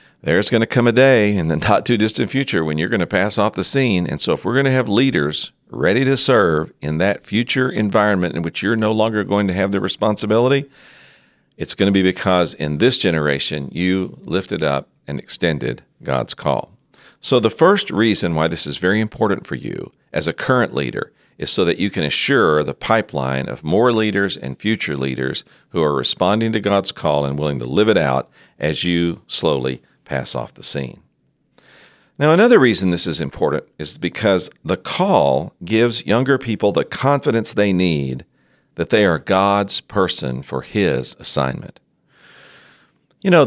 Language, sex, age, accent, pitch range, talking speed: English, male, 50-69, American, 80-115 Hz, 185 wpm